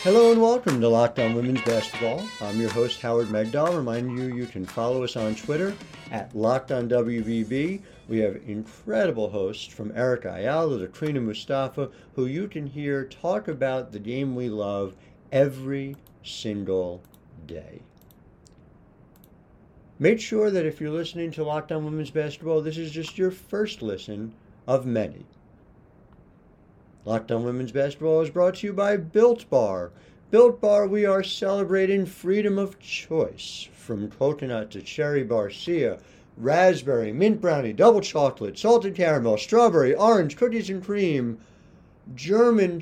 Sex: male